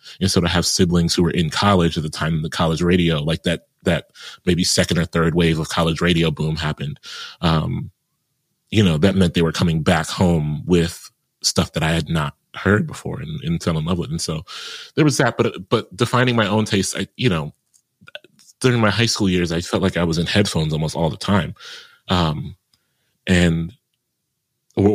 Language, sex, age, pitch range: English, male, 30-49, 85-110 Hz